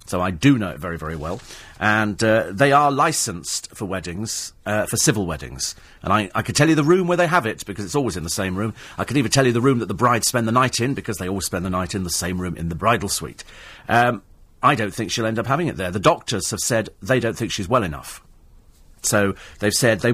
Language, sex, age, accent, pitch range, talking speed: English, male, 40-59, British, 95-125 Hz, 270 wpm